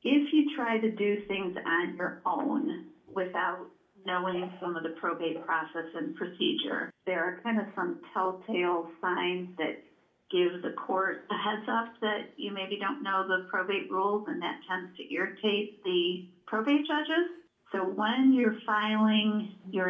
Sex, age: female, 50-69